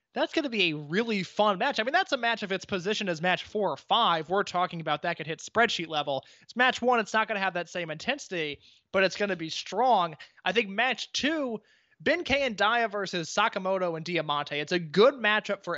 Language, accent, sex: English, American, male